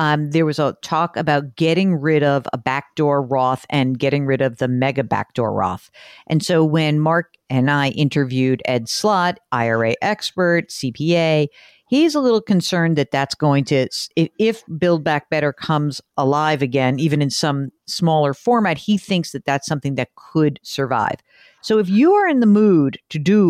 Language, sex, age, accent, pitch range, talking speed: English, female, 50-69, American, 135-180 Hz, 175 wpm